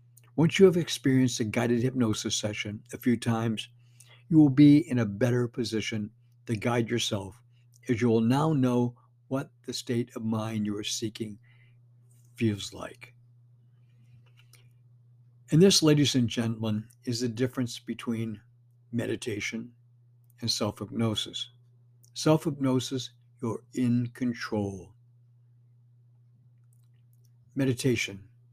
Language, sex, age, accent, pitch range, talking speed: English, male, 60-79, American, 120-125 Hz, 110 wpm